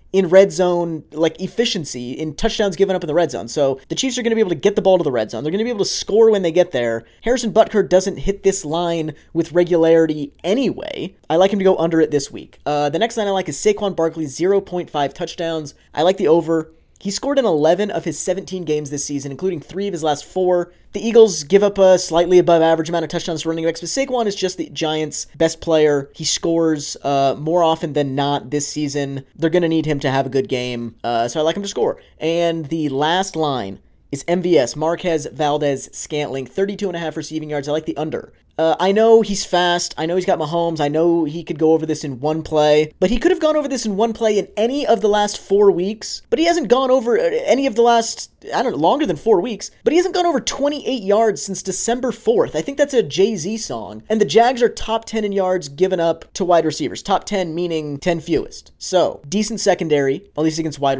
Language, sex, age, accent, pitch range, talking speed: English, male, 20-39, American, 150-200 Hz, 245 wpm